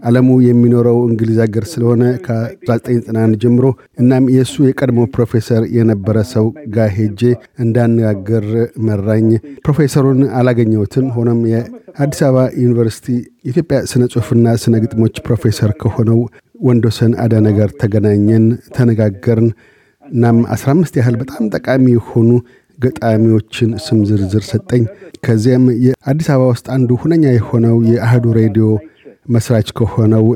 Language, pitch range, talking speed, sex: Amharic, 110-125 Hz, 85 wpm, male